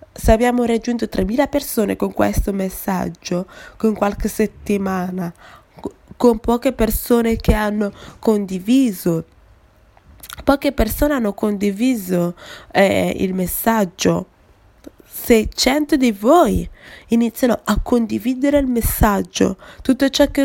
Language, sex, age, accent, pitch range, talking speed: English, female, 20-39, Italian, 185-240 Hz, 105 wpm